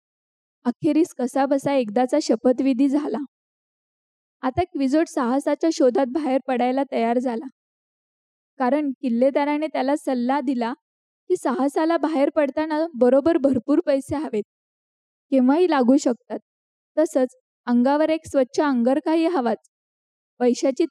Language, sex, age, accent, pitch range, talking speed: Marathi, female, 20-39, native, 255-310 Hz, 110 wpm